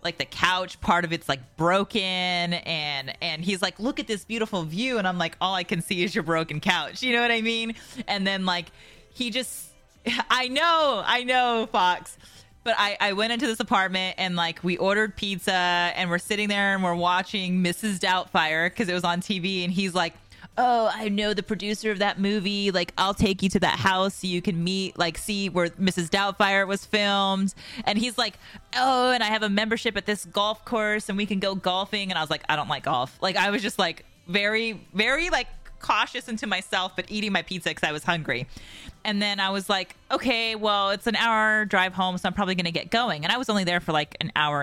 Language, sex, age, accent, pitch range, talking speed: English, female, 30-49, American, 180-220 Hz, 230 wpm